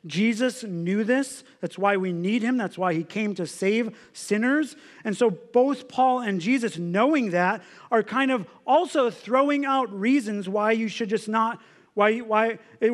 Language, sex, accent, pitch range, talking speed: English, male, American, 190-235 Hz, 175 wpm